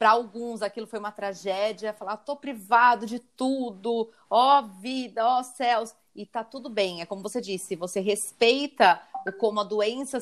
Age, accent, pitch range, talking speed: 30-49, Brazilian, 205-255 Hz, 165 wpm